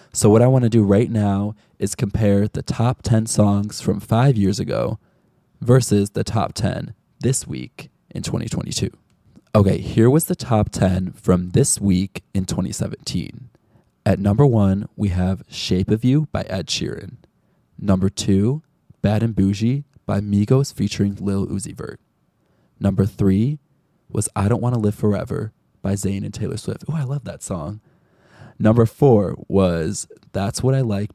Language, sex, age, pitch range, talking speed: English, male, 20-39, 100-120 Hz, 165 wpm